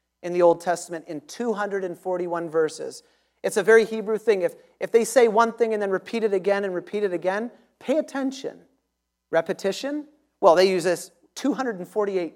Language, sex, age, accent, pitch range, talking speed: English, male, 40-59, American, 165-210 Hz, 170 wpm